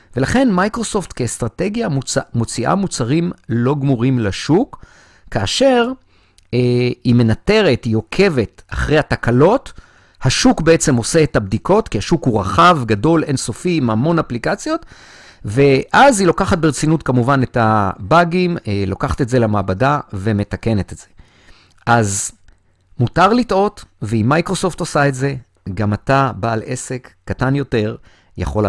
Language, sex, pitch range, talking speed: Hebrew, male, 100-165 Hz, 130 wpm